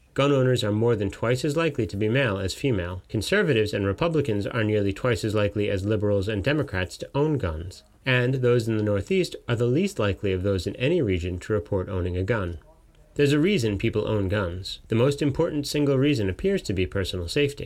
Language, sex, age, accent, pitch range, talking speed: English, male, 30-49, American, 95-130 Hz, 215 wpm